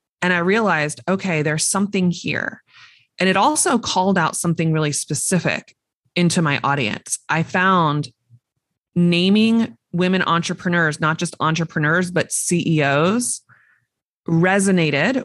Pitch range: 150-185 Hz